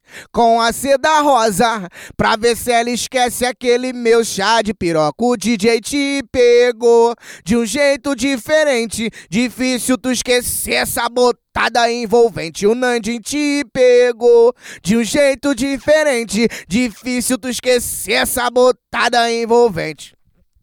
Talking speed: 120 wpm